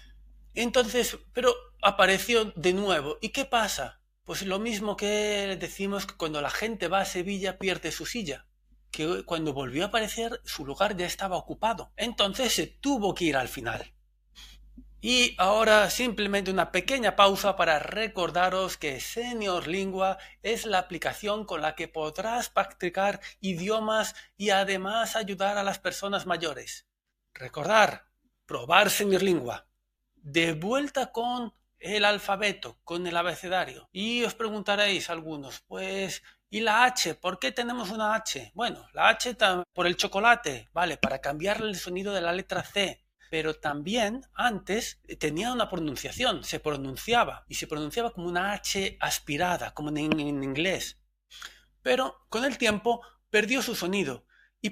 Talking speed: 145 wpm